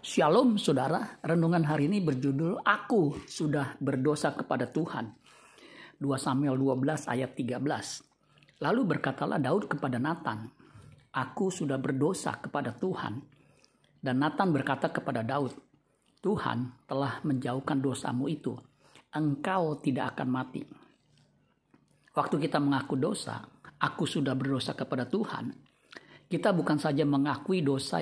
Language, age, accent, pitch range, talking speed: Indonesian, 50-69, native, 135-160 Hz, 115 wpm